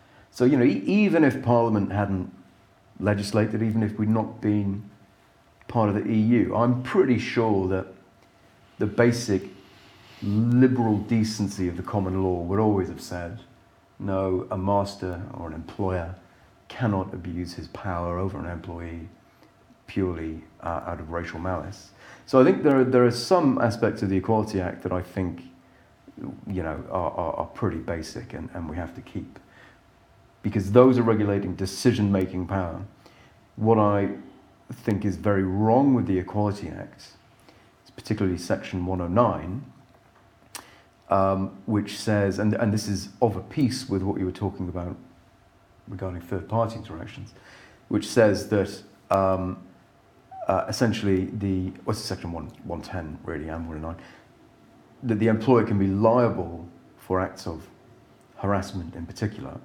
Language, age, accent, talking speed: English, 40-59, British, 150 wpm